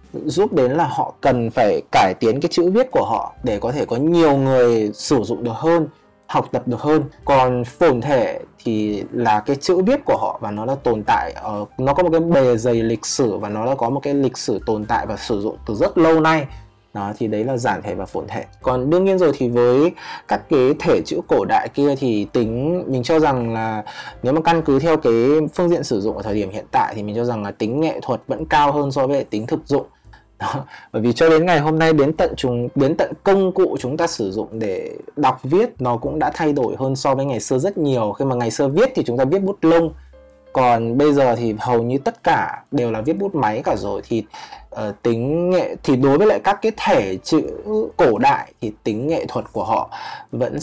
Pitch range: 115-160 Hz